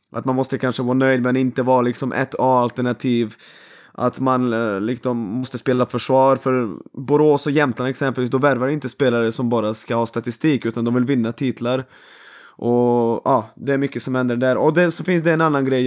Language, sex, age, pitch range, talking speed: Swedish, male, 20-39, 120-140 Hz, 205 wpm